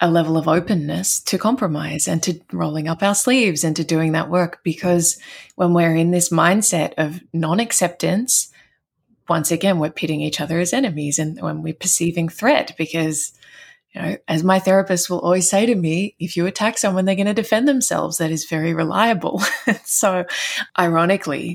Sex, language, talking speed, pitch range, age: female, English, 180 wpm, 155-185 Hz, 20-39